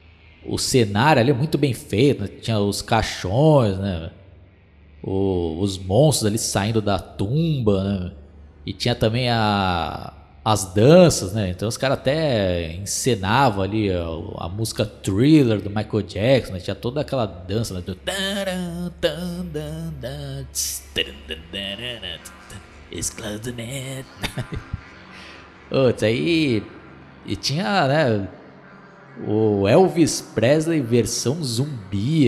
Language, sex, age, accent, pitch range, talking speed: Portuguese, male, 20-39, Brazilian, 100-135 Hz, 105 wpm